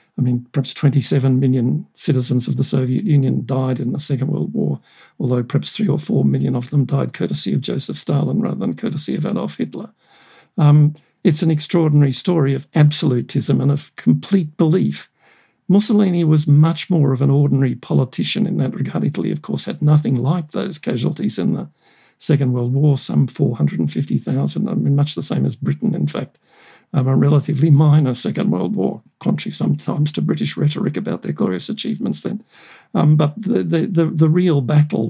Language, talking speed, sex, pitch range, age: English, 180 wpm, male, 135-160 Hz, 60-79